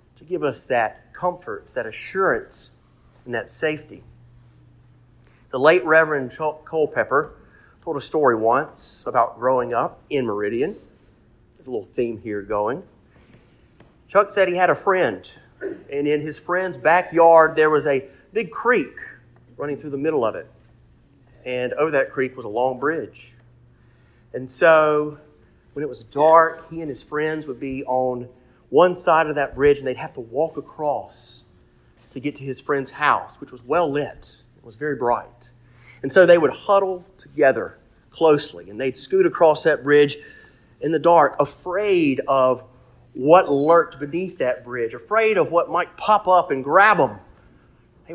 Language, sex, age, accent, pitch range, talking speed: English, male, 40-59, American, 125-165 Hz, 160 wpm